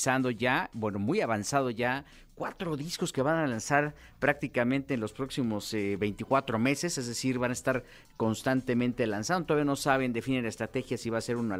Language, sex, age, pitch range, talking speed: Spanish, male, 50-69, 110-140 Hz, 185 wpm